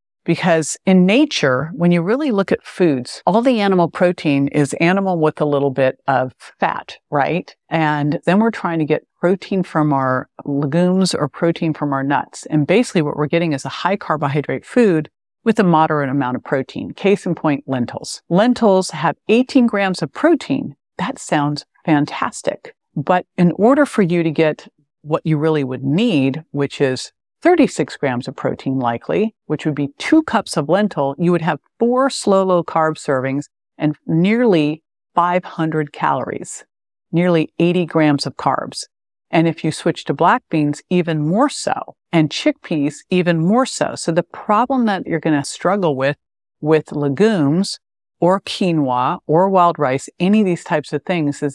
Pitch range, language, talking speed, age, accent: 145-195 Hz, English, 170 wpm, 50-69, American